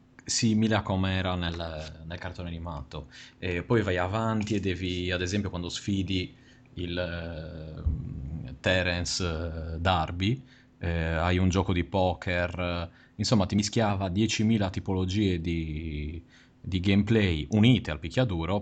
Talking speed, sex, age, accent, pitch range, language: 125 wpm, male, 30-49, native, 85-105 Hz, Italian